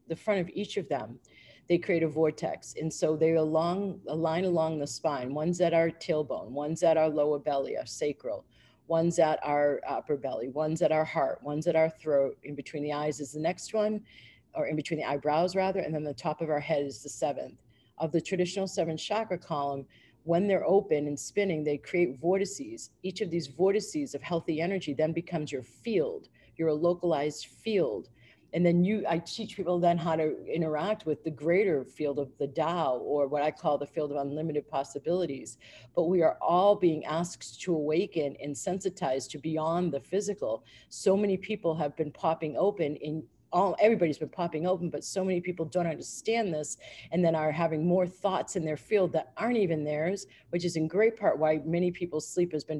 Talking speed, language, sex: 205 wpm, English, female